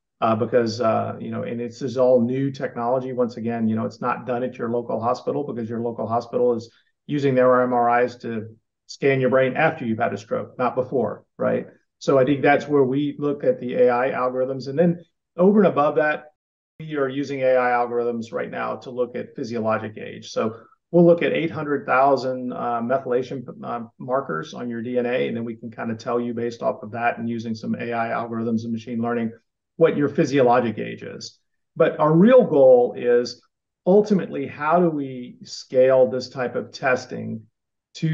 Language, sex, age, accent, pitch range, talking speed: English, male, 40-59, American, 115-140 Hz, 195 wpm